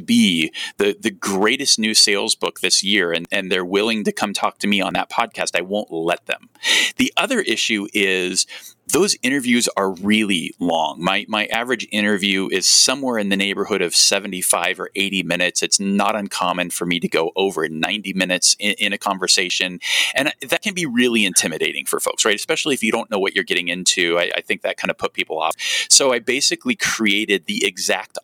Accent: American